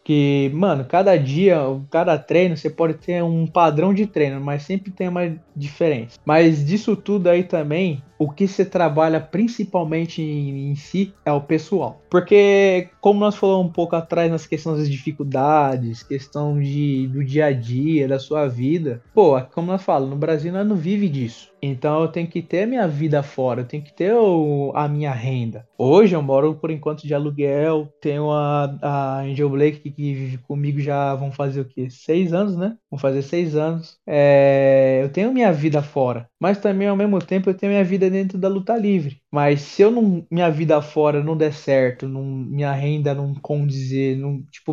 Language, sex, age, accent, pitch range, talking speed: Portuguese, male, 20-39, Brazilian, 145-185 Hz, 190 wpm